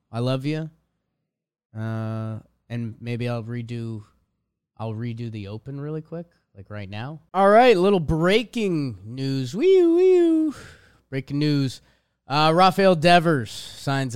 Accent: American